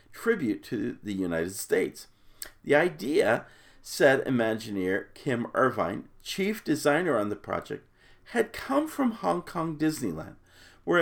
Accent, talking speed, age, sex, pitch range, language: American, 125 wpm, 50-69, male, 125-200 Hz, English